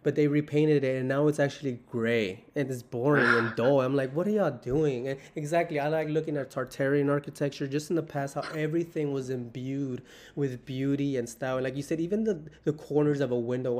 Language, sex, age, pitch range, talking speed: English, male, 20-39, 125-150 Hz, 220 wpm